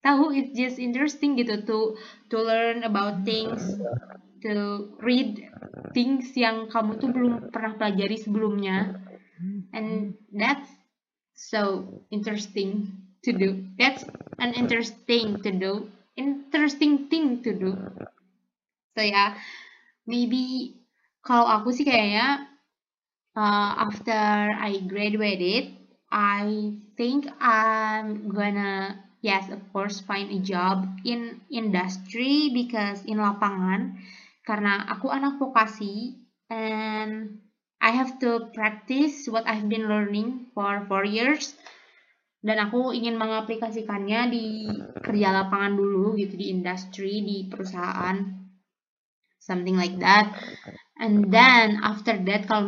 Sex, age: female, 20-39